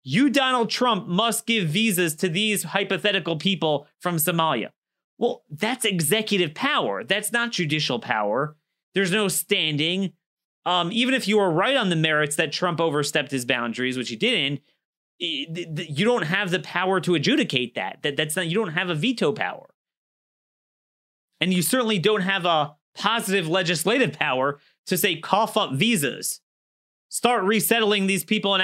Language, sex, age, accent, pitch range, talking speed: English, male, 30-49, American, 155-215 Hz, 155 wpm